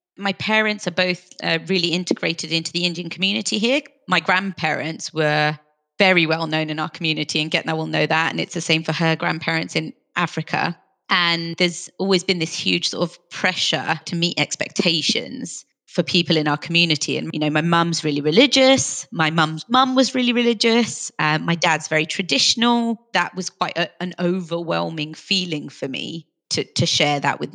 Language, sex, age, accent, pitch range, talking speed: English, female, 30-49, British, 160-195 Hz, 180 wpm